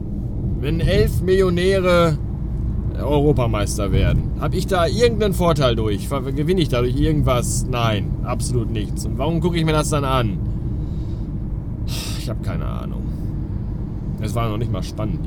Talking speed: 140 wpm